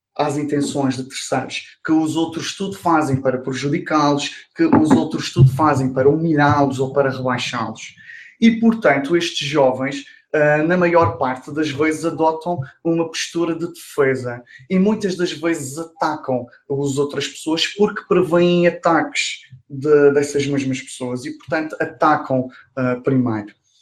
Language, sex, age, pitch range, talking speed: Portuguese, male, 20-39, 140-175 Hz, 135 wpm